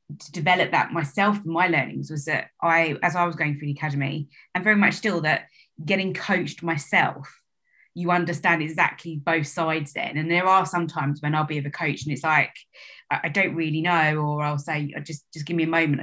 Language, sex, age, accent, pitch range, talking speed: English, female, 20-39, British, 150-175 Hz, 215 wpm